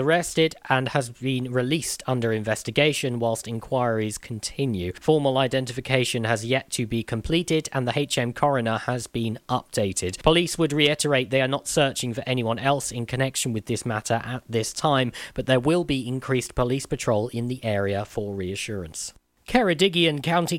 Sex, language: male, English